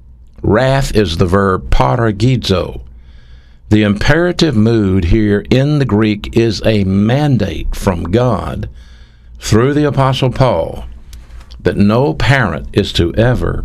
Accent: American